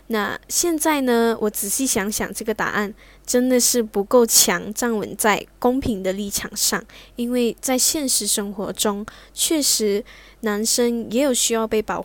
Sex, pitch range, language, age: female, 210-245 Hz, Chinese, 10-29